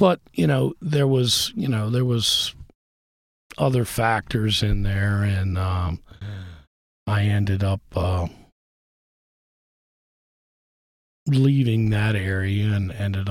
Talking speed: 110 wpm